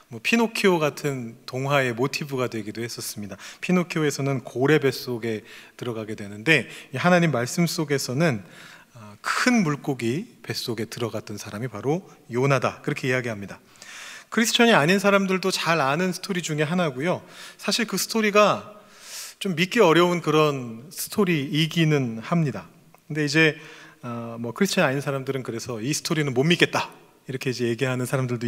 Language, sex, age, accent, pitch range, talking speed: English, male, 30-49, Korean, 120-180 Hz, 120 wpm